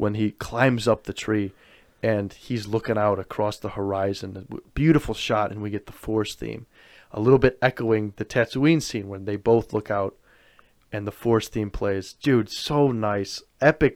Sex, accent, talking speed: male, American, 180 wpm